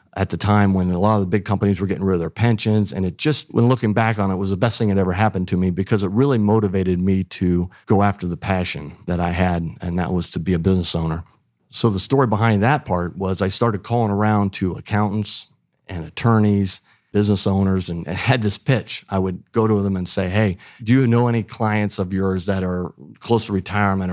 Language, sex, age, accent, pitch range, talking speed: English, male, 50-69, American, 90-110 Hz, 235 wpm